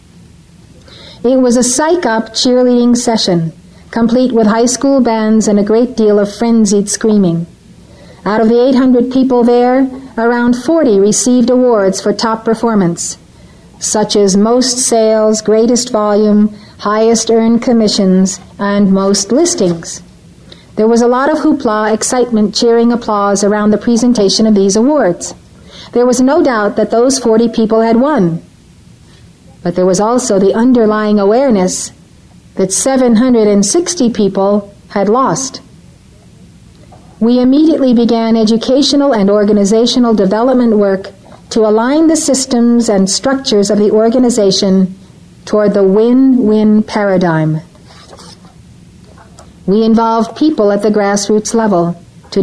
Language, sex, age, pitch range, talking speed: English, female, 50-69, 205-245 Hz, 125 wpm